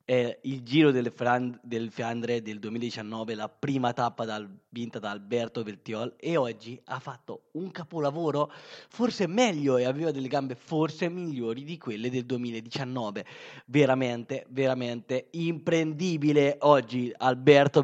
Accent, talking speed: native, 135 wpm